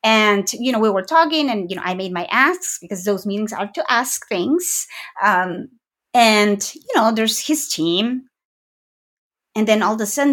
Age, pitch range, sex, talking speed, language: 30-49, 210-270 Hz, female, 190 wpm, English